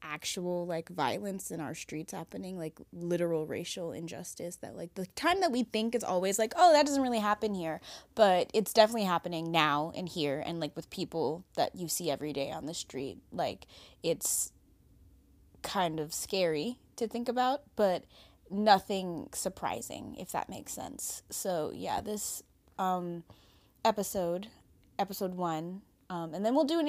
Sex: female